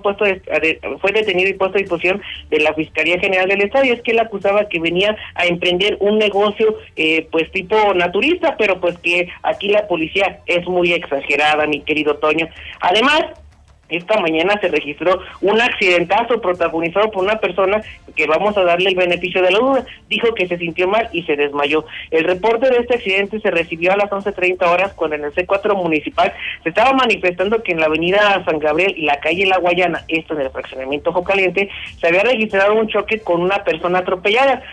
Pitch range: 165-210 Hz